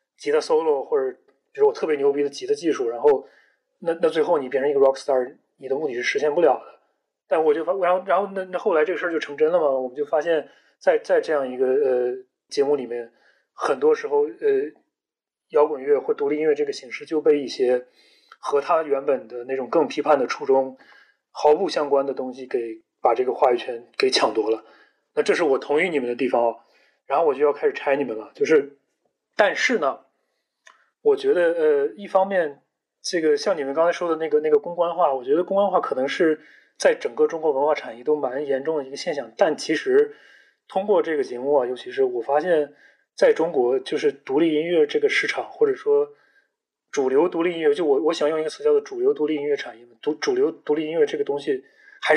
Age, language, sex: 30-49, Chinese, male